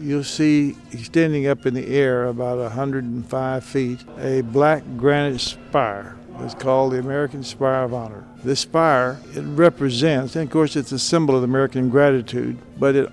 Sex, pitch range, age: male, 120-140 Hz, 60-79